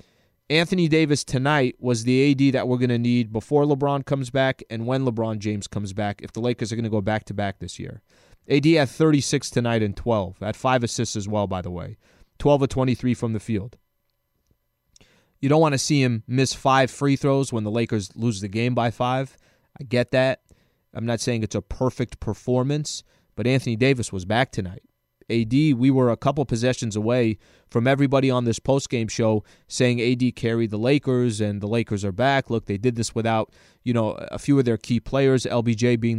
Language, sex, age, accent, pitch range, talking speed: English, male, 20-39, American, 110-135 Hz, 205 wpm